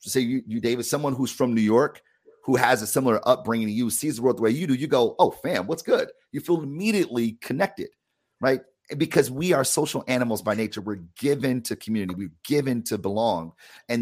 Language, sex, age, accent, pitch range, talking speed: English, male, 30-49, American, 110-135 Hz, 225 wpm